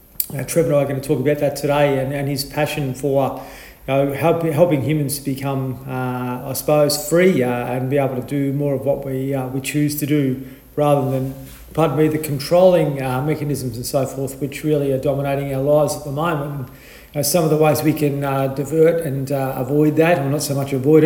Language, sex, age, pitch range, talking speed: English, male, 40-59, 130-150 Hz, 235 wpm